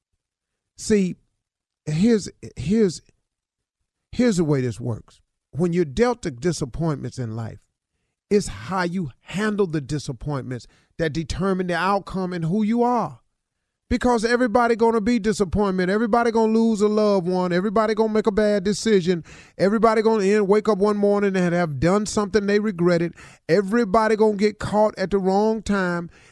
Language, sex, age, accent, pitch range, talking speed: English, male, 40-59, American, 130-195 Hz, 165 wpm